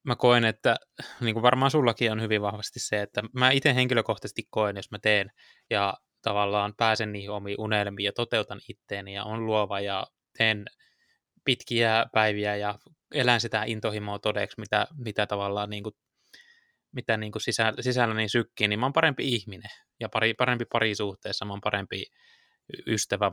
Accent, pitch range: native, 105-120 Hz